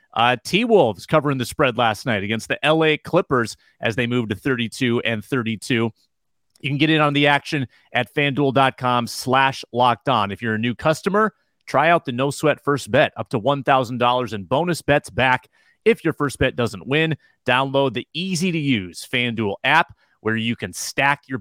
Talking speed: 190 wpm